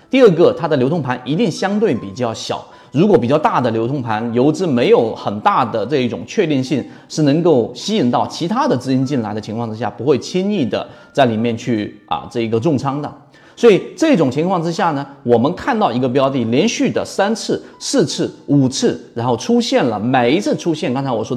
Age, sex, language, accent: 30-49, male, Chinese, native